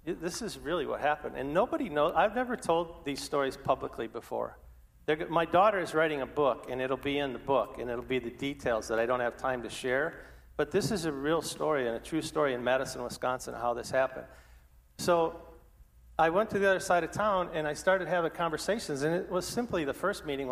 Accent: American